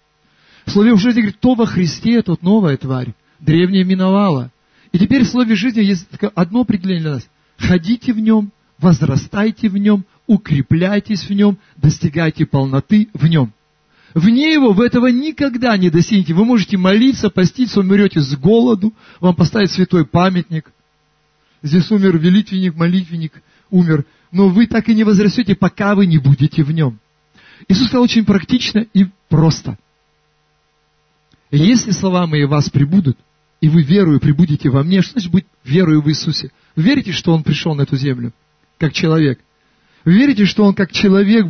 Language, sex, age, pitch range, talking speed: Russian, male, 40-59, 150-210 Hz, 160 wpm